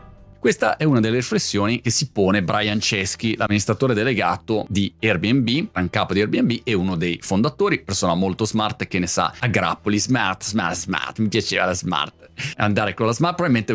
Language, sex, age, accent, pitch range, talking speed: Italian, male, 30-49, native, 100-130 Hz, 185 wpm